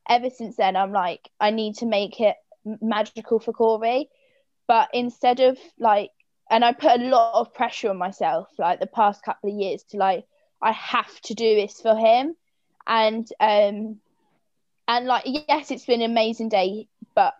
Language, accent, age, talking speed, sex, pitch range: English, British, 20-39, 180 wpm, female, 215-245 Hz